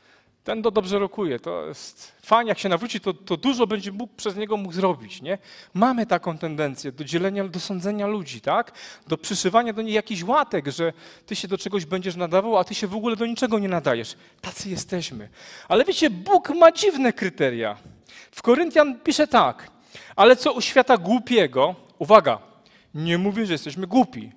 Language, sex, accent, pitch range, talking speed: Polish, male, native, 185-250 Hz, 180 wpm